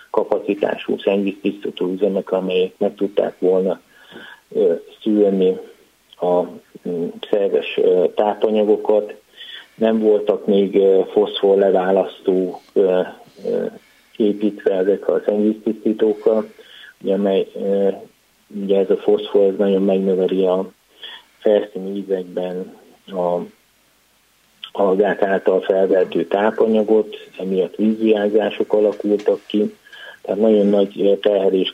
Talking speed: 80 wpm